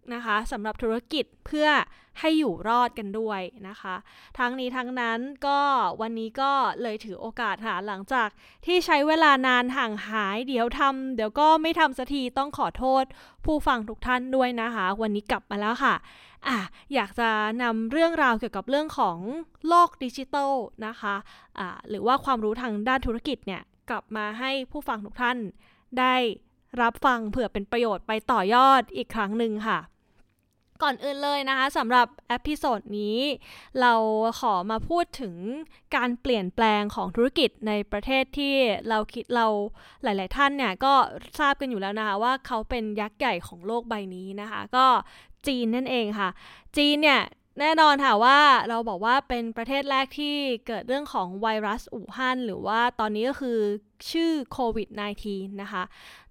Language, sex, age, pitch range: English, female, 20-39, 215-270 Hz